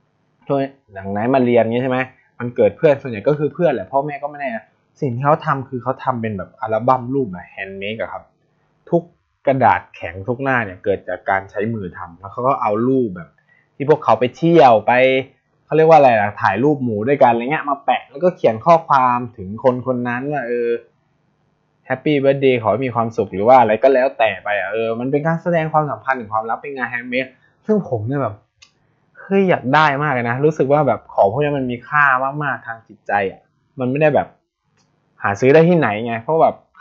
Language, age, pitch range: Thai, 20-39, 125-160 Hz